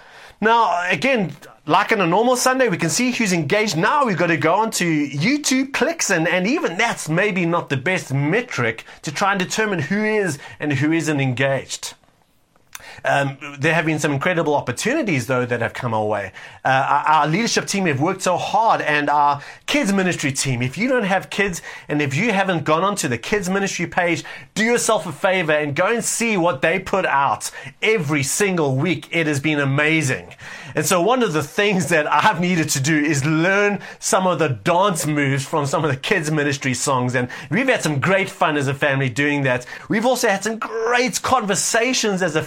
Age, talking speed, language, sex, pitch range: 30-49, 205 wpm, English, male, 150-200 Hz